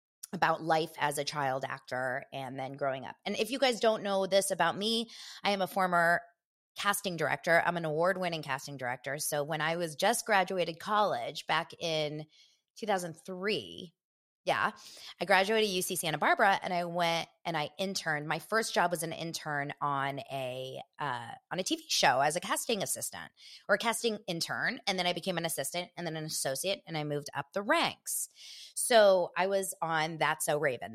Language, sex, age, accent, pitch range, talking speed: English, female, 20-39, American, 150-195 Hz, 185 wpm